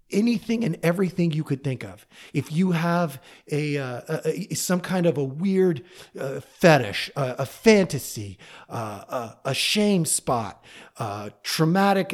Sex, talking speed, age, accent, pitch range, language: male, 150 wpm, 40-59, American, 135-175 Hz, English